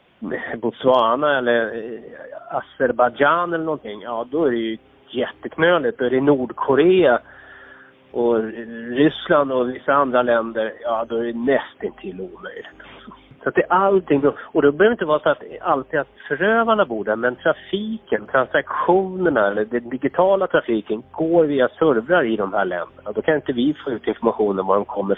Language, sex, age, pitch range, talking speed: Swedish, male, 30-49, 125-180 Hz, 170 wpm